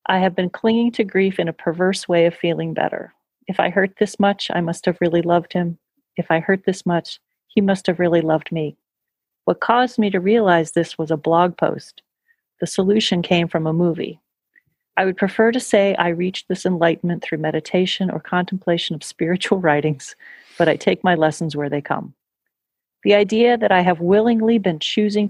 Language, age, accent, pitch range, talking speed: English, 40-59, American, 165-195 Hz, 195 wpm